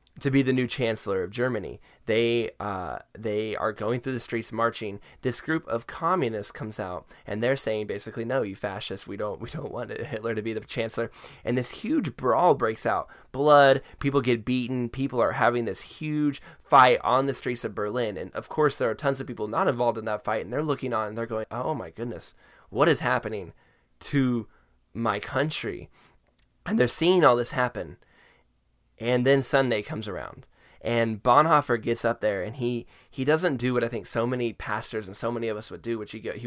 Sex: male